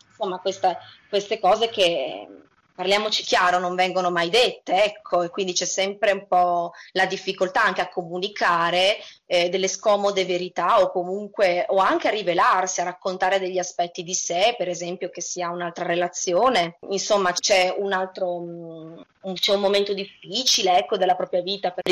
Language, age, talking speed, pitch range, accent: Italian, 20-39, 155 wpm, 175-200 Hz, native